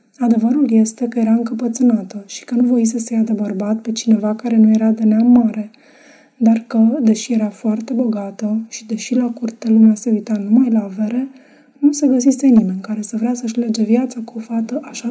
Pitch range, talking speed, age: 220-245 Hz, 205 wpm, 20-39